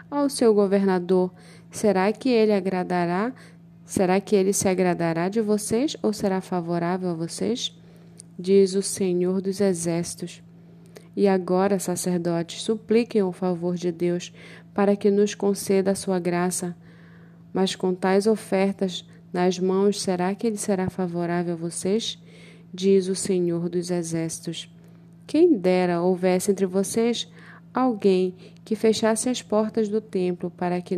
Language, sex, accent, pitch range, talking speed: Portuguese, female, Brazilian, 175-200 Hz, 140 wpm